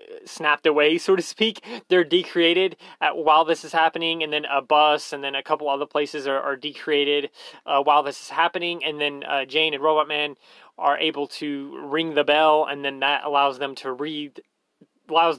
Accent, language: American, English